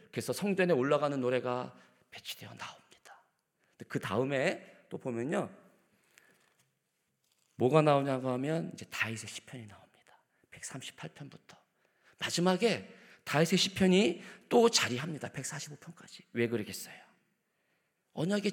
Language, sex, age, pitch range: Korean, male, 40-59, 120-180 Hz